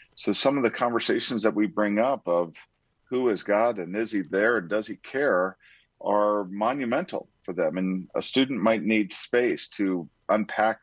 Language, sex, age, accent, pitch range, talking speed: English, male, 40-59, American, 95-110 Hz, 185 wpm